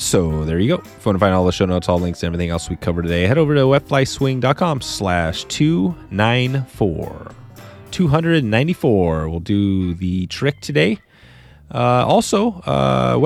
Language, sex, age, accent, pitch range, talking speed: English, male, 30-49, American, 85-110 Hz, 155 wpm